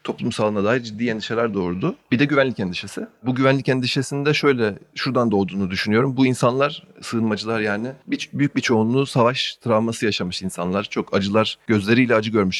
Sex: male